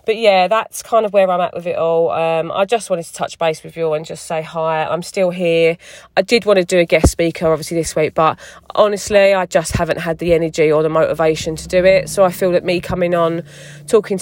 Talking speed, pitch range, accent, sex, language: 255 wpm, 160-190 Hz, British, female, English